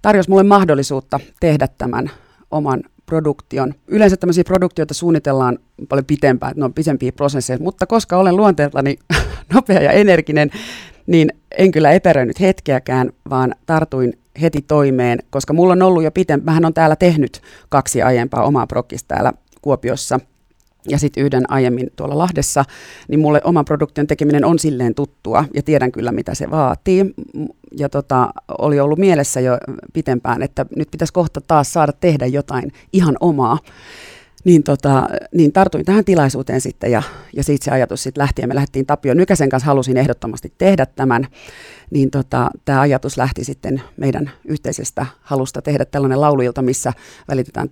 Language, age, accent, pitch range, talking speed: Finnish, 40-59, native, 130-160 Hz, 155 wpm